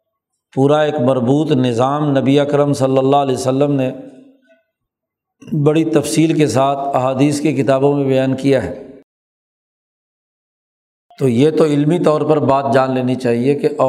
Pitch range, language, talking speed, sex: 135-160 Hz, Urdu, 145 wpm, male